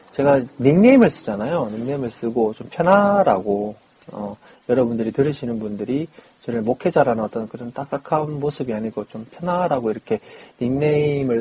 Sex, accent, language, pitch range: male, native, Korean, 115-160 Hz